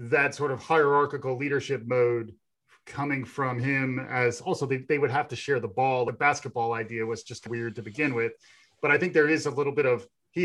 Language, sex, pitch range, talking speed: English, male, 120-145 Hz, 220 wpm